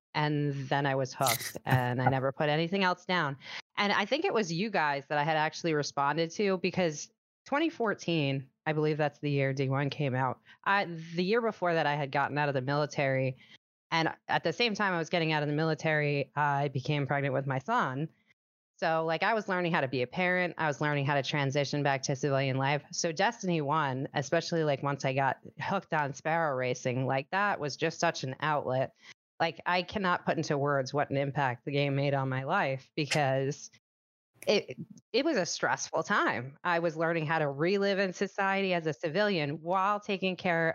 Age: 20-39